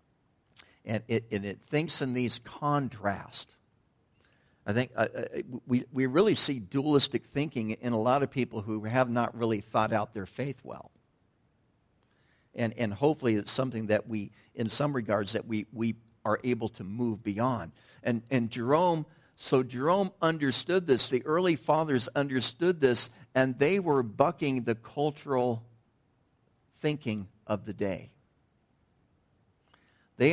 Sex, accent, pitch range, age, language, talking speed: male, American, 110-140 Hz, 60-79, English, 140 wpm